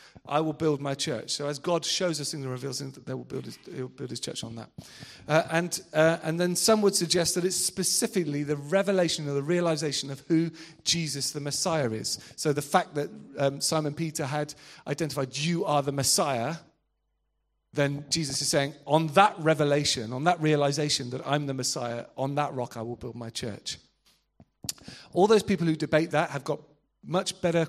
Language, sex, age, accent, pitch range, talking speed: English, male, 40-59, British, 135-170 Hz, 200 wpm